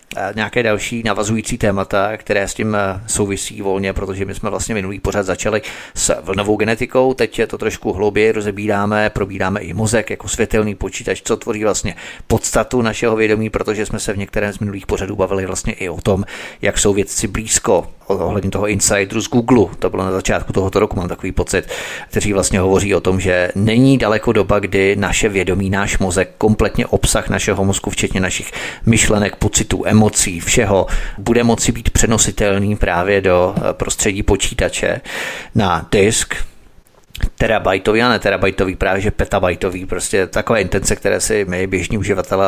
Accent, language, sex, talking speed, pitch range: native, Czech, male, 165 wpm, 95-110 Hz